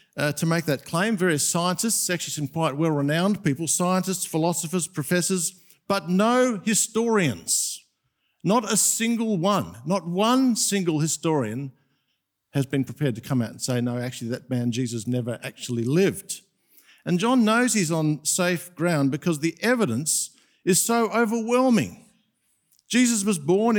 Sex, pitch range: male, 145-200 Hz